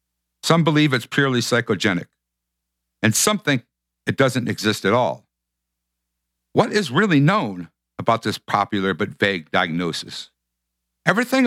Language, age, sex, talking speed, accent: English, 60-79, male, 125 wpm, American